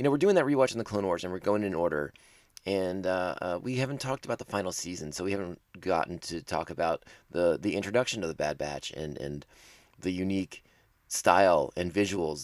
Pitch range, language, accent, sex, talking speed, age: 85-105 Hz, English, American, male, 220 wpm, 30-49